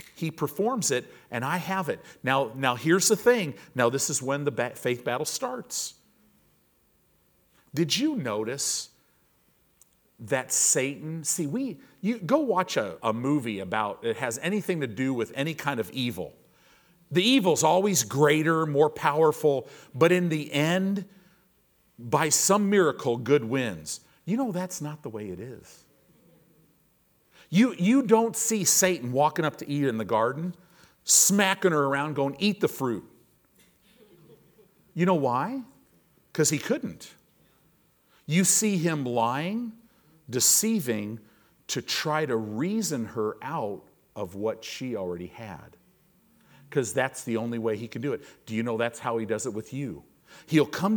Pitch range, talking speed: 125-185 Hz, 155 wpm